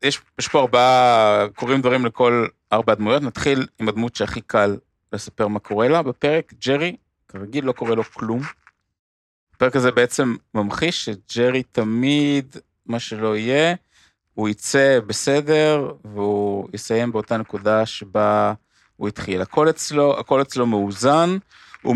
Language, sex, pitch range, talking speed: Hebrew, male, 105-130 Hz, 125 wpm